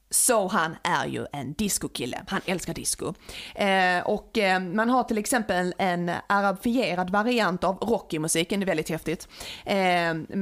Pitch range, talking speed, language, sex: 175-225 Hz, 150 wpm, Swedish, female